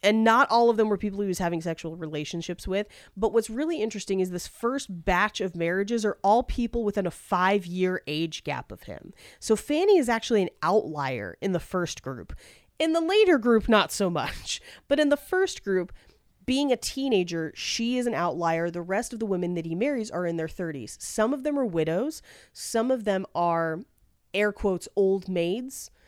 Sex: female